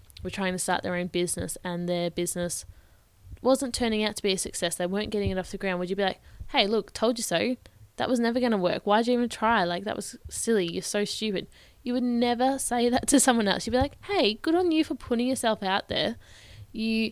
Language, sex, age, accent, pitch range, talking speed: English, female, 10-29, Australian, 180-225 Hz, 245 wpm